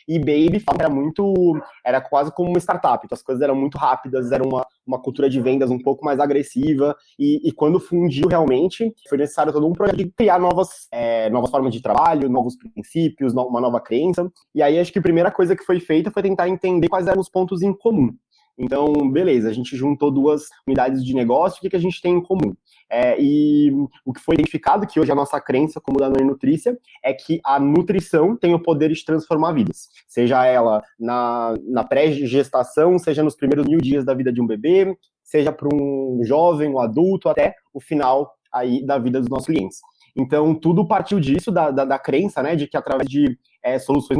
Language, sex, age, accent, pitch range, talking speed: Portuguese, male, 20-39, Brazilian, 135-180 Hz, 200 wpm